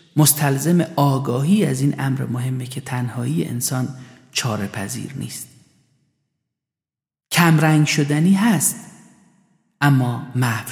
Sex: male